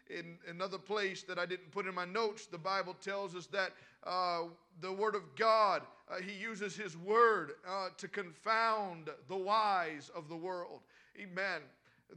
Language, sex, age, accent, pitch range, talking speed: English, male, 40-59, American, 190-235 Hz, 170 wpm